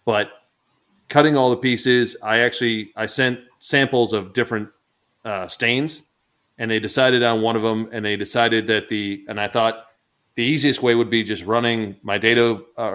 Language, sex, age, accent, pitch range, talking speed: English, male, 30-49, American, 105-120 Hz, 180 wpm